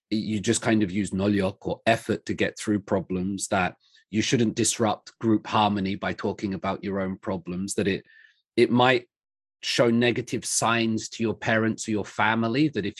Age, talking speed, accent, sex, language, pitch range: 30-49, 180 wpm, British, male, English, 100-120 Hz